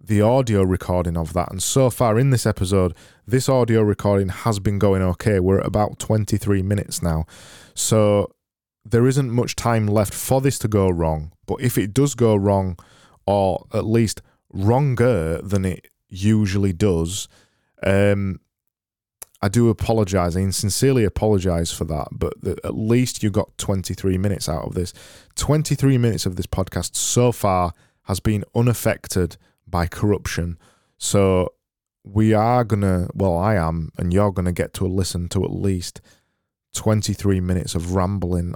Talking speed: 155 wpm